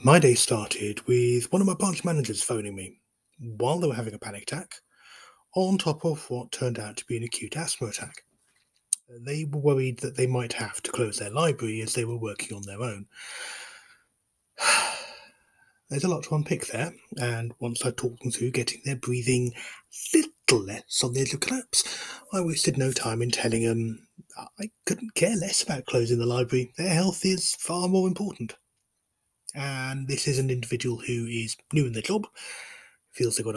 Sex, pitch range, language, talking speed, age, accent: male, 115-165 Hz, English, 190 wpm, 30-49, British